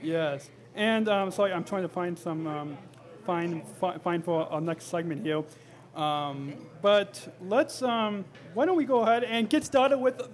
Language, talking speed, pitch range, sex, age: English, 180 wpm, 160-215 Hz, male, 30-49